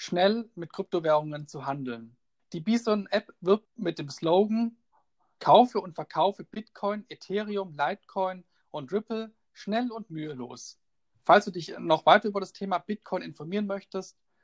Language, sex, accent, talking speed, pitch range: German, male, German, 135 wpm, 155-200 Hz